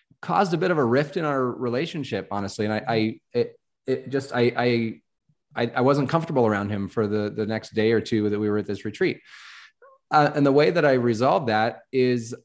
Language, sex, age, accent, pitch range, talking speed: English, male, 30-49, American, 110-135 Hz, 215 wpm